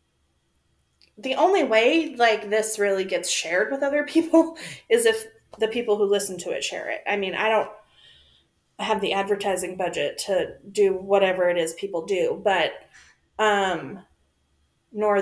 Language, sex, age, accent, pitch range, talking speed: English, female, 30-49, American, 180-235 Hz, 155 wpm